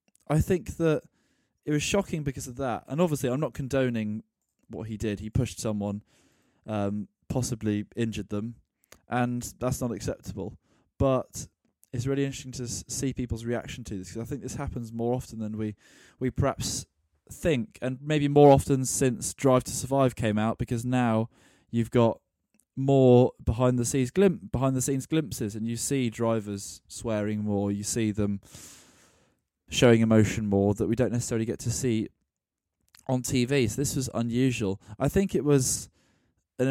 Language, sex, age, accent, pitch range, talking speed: English, male, 20-39, British, 110-135 Hz, 165 wpm